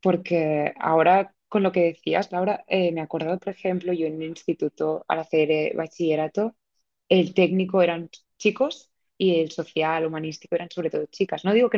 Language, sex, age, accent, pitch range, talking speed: Spanish, female, 20-39, Spanish, 165-195 Hz, 180 wpm